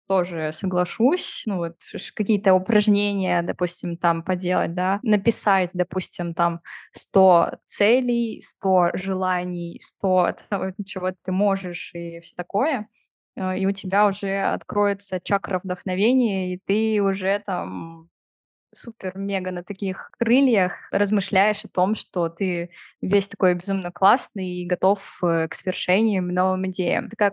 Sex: female